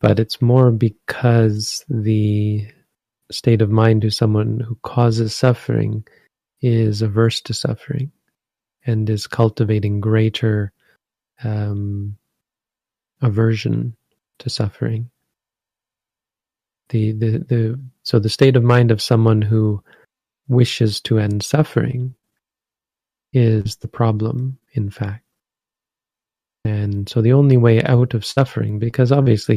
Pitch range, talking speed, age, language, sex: 110-125 Hz, 110 wpm, 30-49, English, male